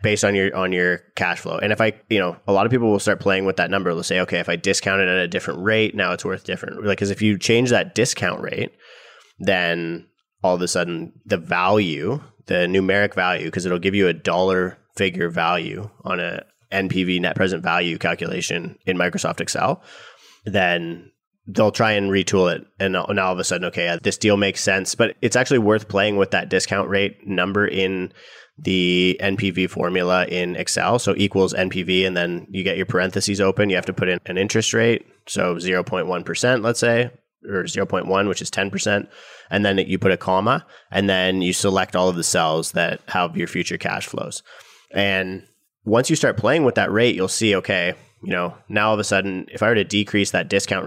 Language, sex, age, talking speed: English, male, 20-39, 210 wpm